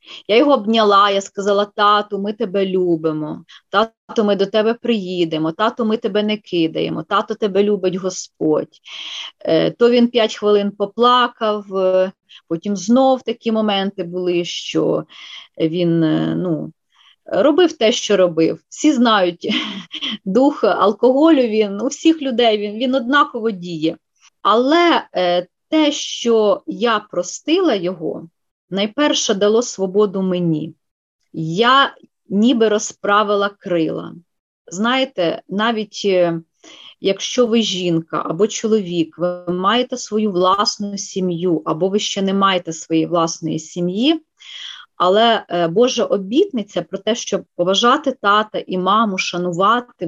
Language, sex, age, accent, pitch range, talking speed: Ukrainian, female, 30-49, native, 180-235 Hz, 115 wpm